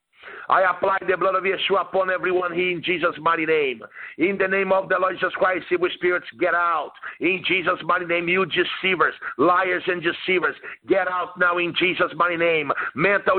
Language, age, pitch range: English, 50-69, 190-215 Hz